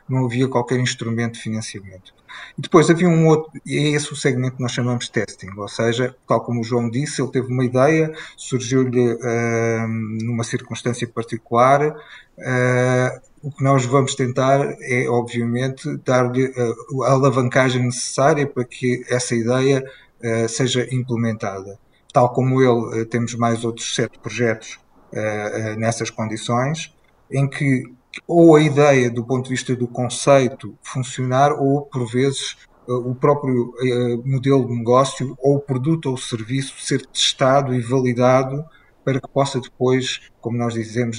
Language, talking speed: Portuguese, 145 wpm